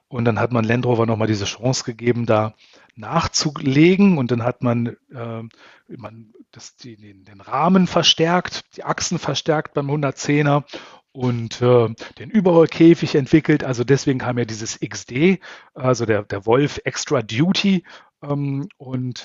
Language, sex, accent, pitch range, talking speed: German, male, German, 120-150 Hz, 145 wpm